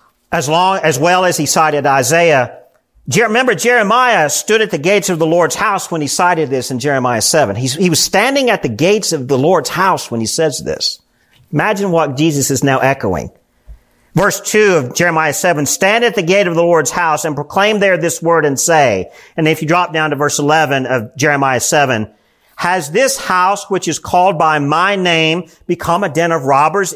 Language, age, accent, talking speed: English, 50-69, American, 205 wpm